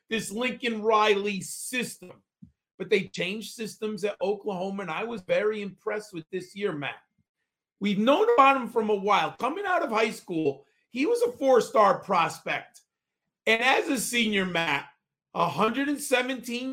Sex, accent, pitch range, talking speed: male, American, 200-245 Hz, 145 wpm